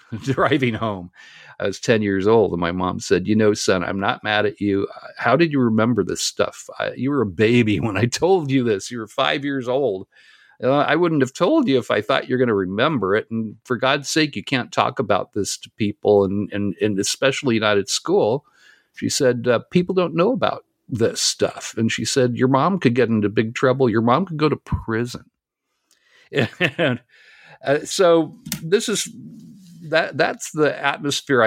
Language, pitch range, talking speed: English, 105-135 Hz, 200 wpm